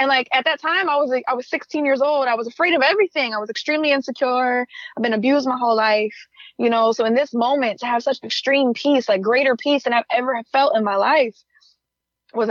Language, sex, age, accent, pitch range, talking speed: English, female, 20-39, American, 205-245 Hz, 240 wpm